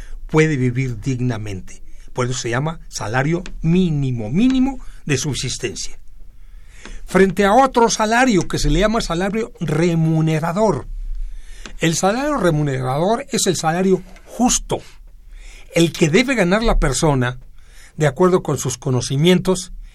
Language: Spanish